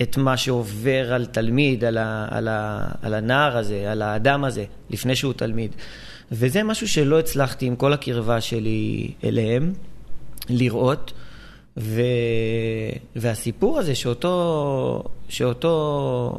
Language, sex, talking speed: Hebrew, male, 120 wpm